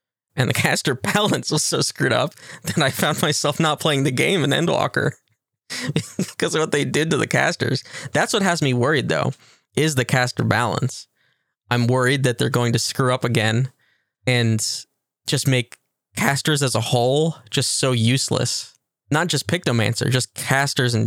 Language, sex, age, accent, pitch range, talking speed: English, male, 20-39, American, 120-155 Hz, 175 wpm